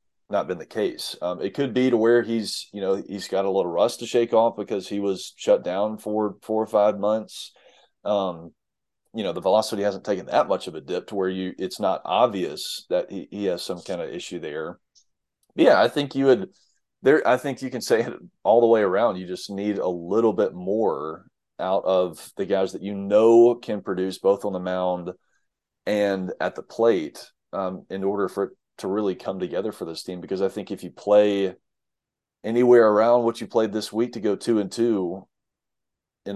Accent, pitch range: American, 95-120 Hz